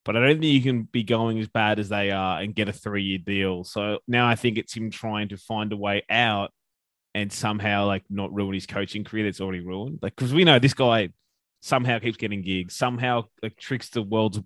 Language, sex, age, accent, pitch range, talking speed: English, male, 20-39, Australian, 100-120 Hz, 230 wpm